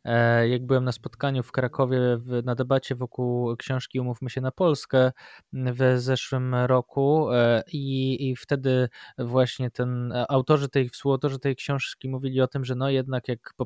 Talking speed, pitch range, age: 160 wpm, 125-140 Hz, 20-39